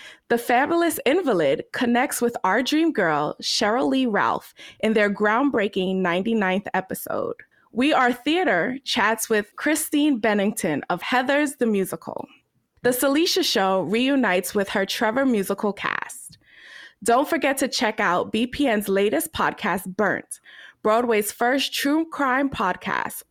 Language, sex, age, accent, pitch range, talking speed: English, female, 20-39, American, 205-275 Hz, 130 wpm